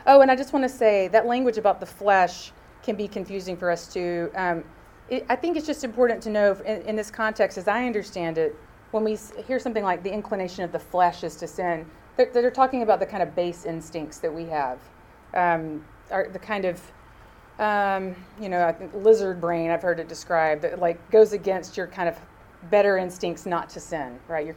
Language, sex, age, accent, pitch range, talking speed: English, female, 30-49, American, 170-225 Hz, 225 wpm